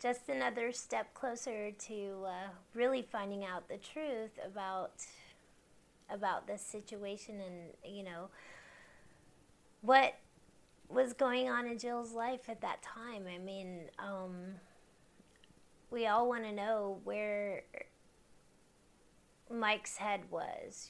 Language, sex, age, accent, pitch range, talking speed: English, female, 30-49, American, 195-235 Hz, 115 wpm